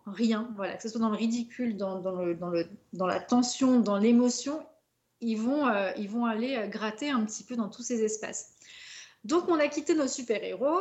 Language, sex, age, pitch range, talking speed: French, female, 30-49, 200-250 Hz, 220 wpm